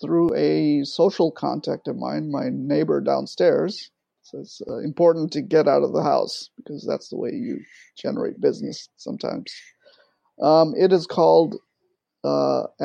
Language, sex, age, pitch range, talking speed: English, male, 30-49, 140-175 Hz, 150 wpm